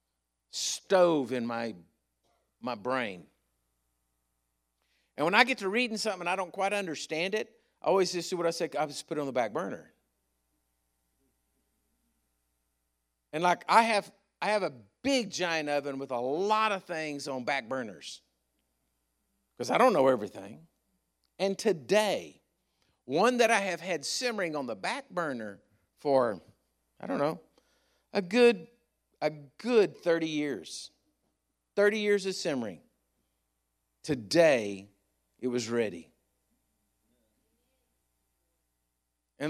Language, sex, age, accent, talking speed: English, male, 50-69, American, 130 wpm